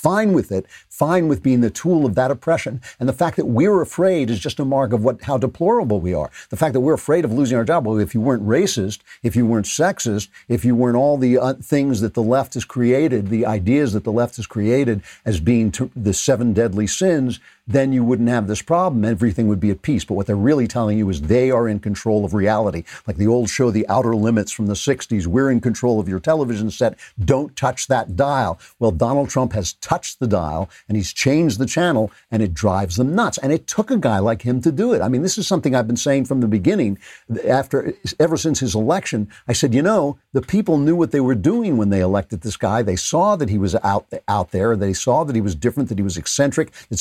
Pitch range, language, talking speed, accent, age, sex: 105-135 Hz, English, 250 wpm, American, 50-69, male